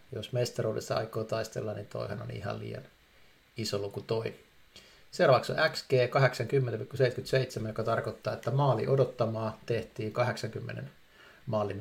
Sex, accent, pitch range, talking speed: male, native, 105-125 Hz, 115 wpm